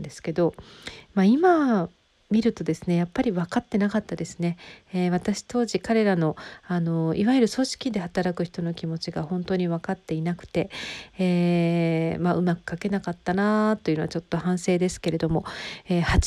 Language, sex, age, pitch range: Japanese, female, 50-69, 175-220 Hz